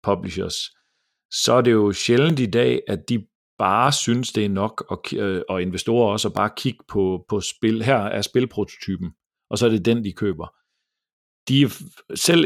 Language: Danish